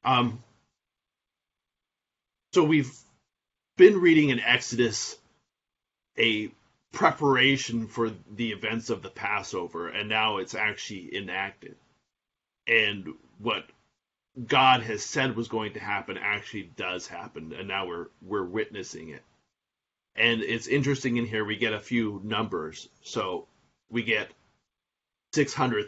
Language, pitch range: English, 105-130 Hz